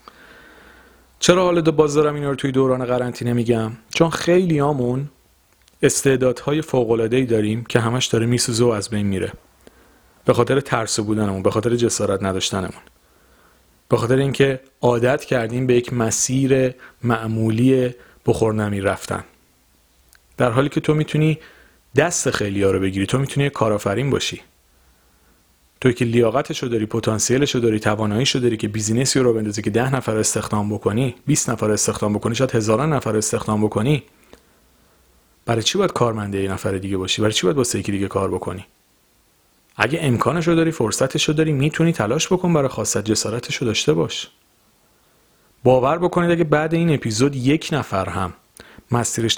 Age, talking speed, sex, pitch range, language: 40-59, 155 wpm, male, 110-135 Hz, Persian